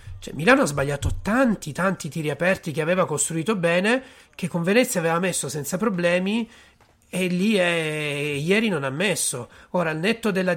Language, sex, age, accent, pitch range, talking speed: Italian, male, 40-59, native, 145-185 Hz, 160 wpm